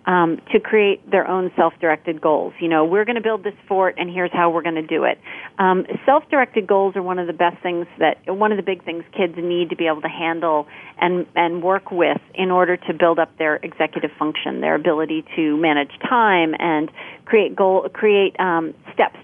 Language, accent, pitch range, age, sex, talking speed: English, American, 165-205 Hz, 40-59, female, 210 wpm